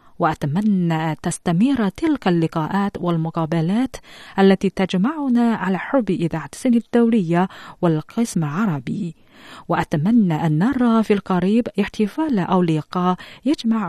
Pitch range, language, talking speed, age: 165-230 Hz, Arabic, 100 wpm, 40-59